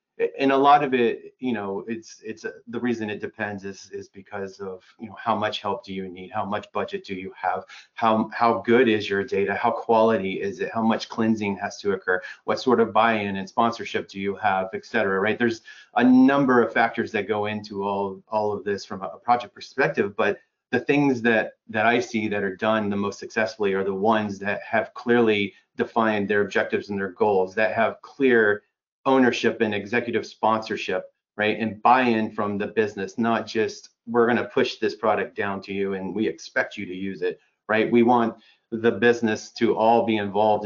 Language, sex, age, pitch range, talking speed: English, male, 30-49, 100-120 Hz, 205 wpm